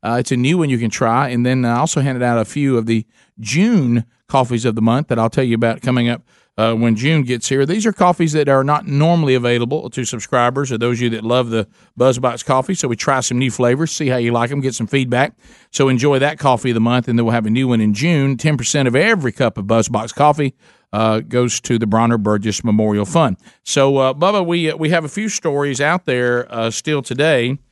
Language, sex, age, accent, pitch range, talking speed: English, male, 50-69, American, 115-145 Hz, 245 wpm